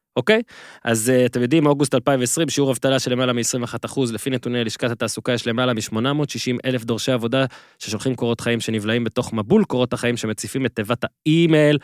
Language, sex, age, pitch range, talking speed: Hebrew, male, 20-39, 120-145 Hz, 175 wpm